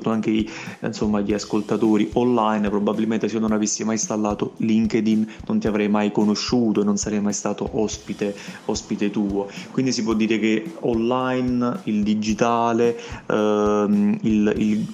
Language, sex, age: Italian, male, 20-39